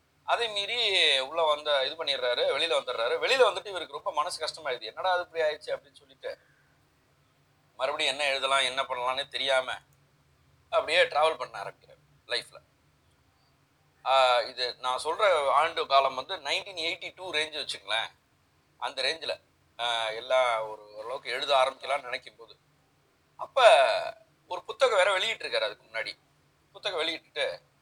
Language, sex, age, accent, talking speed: Tamil, male, 30-49, native, 125 wpm